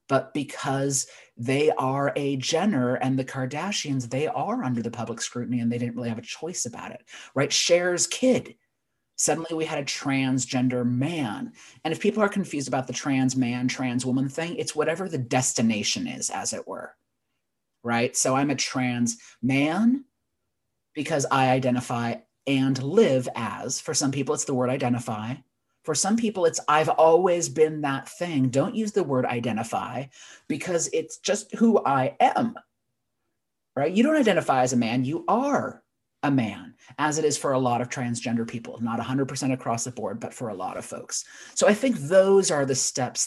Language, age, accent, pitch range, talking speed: English, 30-49, American, 120-155 Hz, 180 wpm